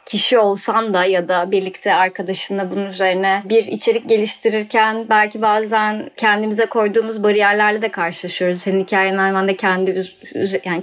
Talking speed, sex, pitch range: 140 wpm, female, 190-240 Hz